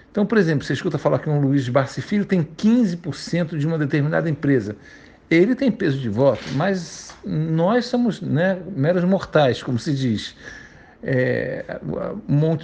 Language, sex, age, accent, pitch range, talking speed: Portuguese, male, 60-79, Brazilian, 140-190 Hz, 155 wpm